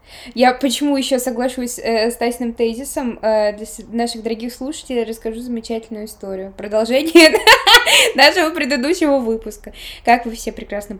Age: 10-29